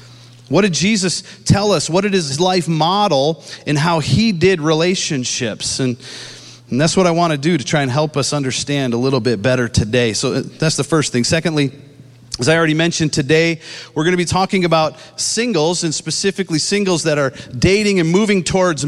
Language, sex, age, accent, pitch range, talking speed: English, male, 40-59, American, 135-185 Hz, 195 wpm